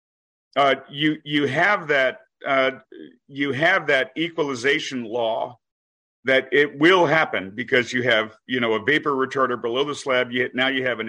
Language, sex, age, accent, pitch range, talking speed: English, male, 50-69, American, 125-150 Hz, 170 wpm